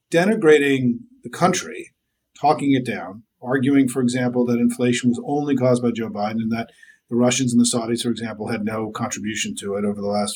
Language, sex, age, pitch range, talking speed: English, male, 40-59, 115-145 Hz, 195 wpm